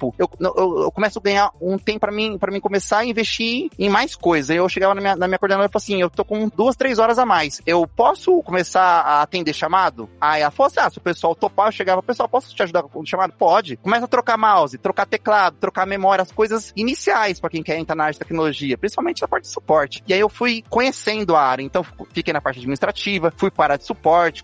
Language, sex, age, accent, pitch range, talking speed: Portuguese, male, 20-39, Brazilian, 160-215 Hz, 250 wpm